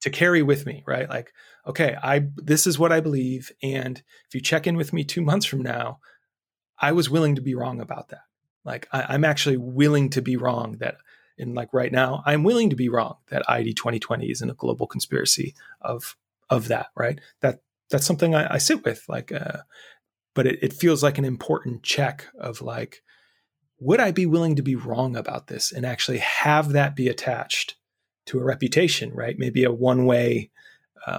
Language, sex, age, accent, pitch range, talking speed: English, male, 30-49, American, 130-165 Hz, 200 wpm